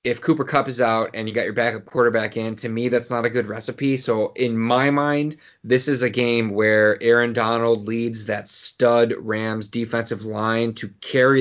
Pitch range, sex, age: 110-130 Hz, male, 20-39